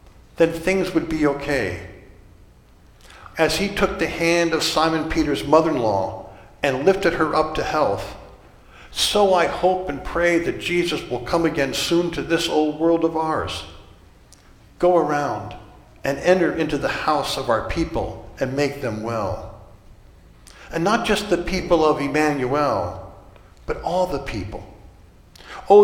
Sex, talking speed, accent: male, 145 wpm, American